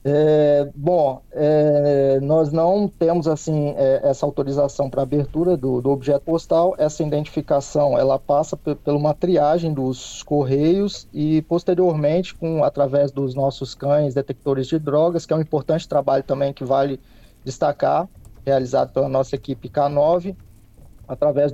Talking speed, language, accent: 140 wpm, Portuguese, Brazilian